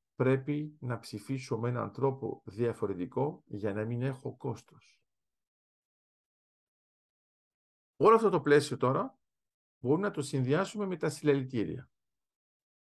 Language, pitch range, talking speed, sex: Greek, 115-155 Hz, 110 wpm, male